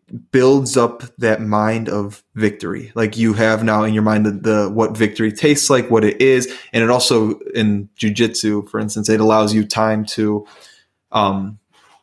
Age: 20-39